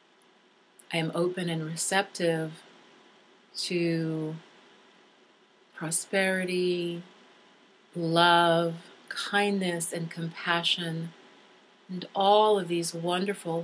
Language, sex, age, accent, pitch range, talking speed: English, female, 40-59, American, 165-195 Hz, 70 wpm